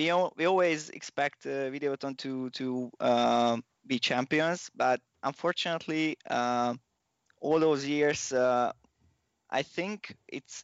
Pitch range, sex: 125-150 Hz, male